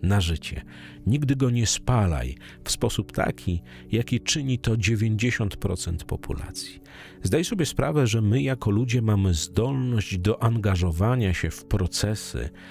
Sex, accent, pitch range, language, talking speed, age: male, native, 90-115 Hz, Polish, 130 wpm, 40-59